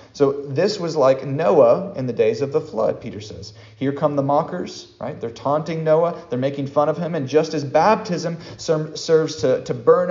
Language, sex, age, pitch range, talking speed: English, male, 40-59, 115-165 Hz, 210 wpm